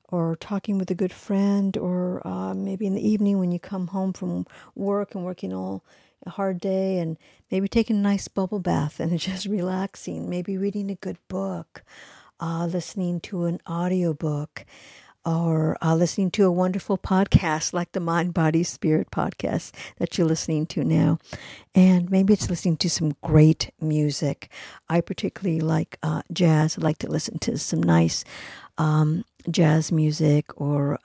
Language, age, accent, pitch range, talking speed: English, 60-79, American, 150-185 Hz, 170 wpm